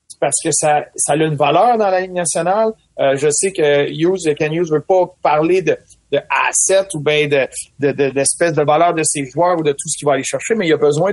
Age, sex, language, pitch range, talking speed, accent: 40-59, male, French, 150-200 Hz, 260 wpm, Canadian